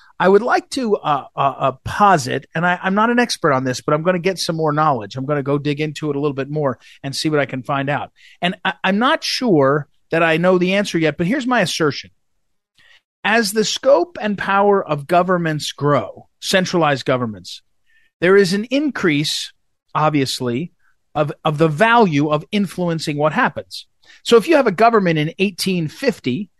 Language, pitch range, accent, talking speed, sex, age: English, 140-185 Hz, American, 200 wpm, male, 40-59